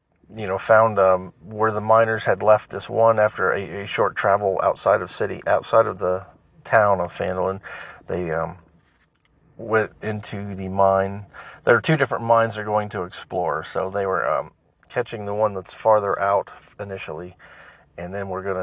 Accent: American